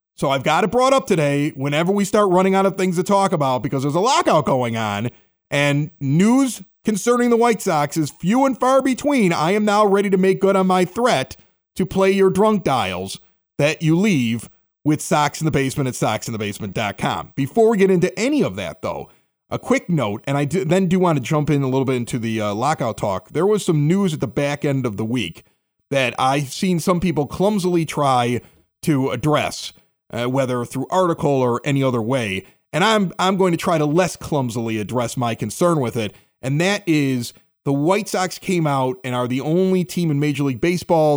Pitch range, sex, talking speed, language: 130-195 Hz, male, 210 wpm, English